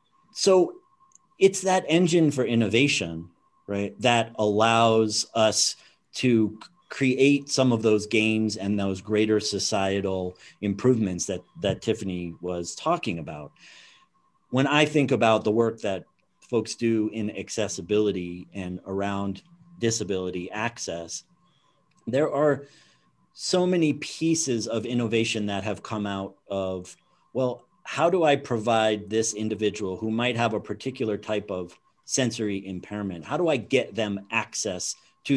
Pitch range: 100-145 Hz